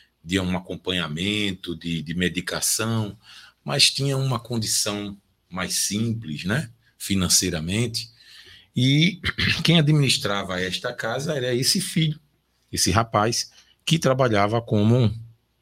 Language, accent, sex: Portuguese, Brazilian, male